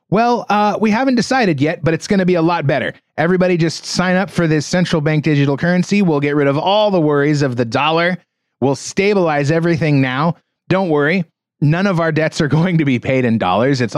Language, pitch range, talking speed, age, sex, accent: English, 135-180 Hz, 225 wpm, 30-49, male, American